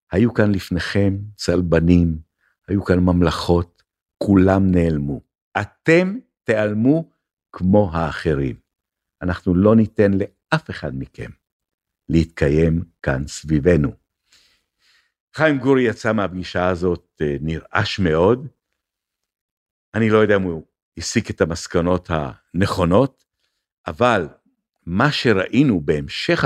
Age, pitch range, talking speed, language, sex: 60-79, 85-115 Hz, 95 wpm, Hebrew, male